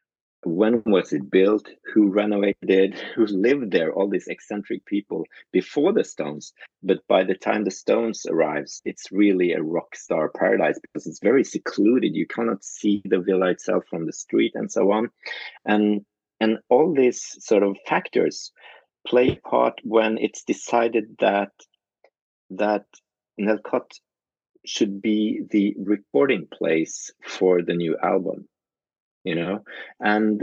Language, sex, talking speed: English, male, 145 wpm